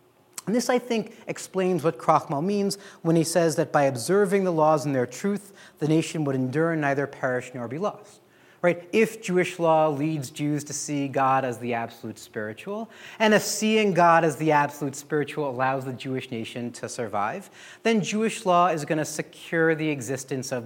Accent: American